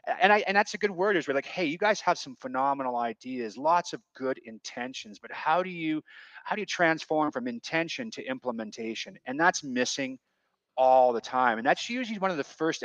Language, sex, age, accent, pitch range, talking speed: English, male, 30-49, American, 120-160 Hz, 215 wpm